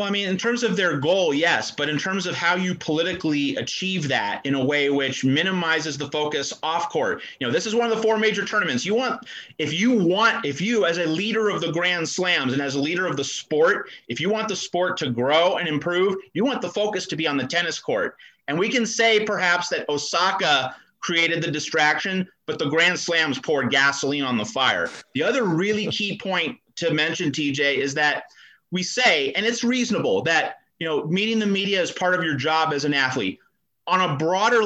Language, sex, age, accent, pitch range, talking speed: English, male, 30-49, American, 145-195 Hz, 220 wpm